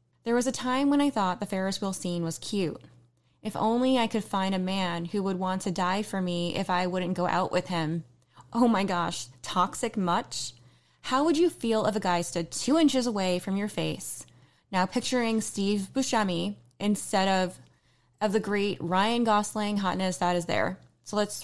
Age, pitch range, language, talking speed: 20-39, 180-240 Hz, English, 195 wpm